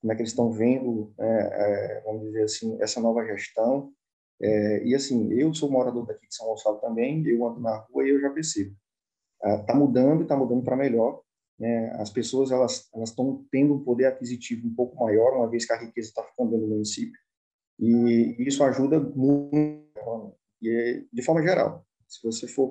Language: Portuguese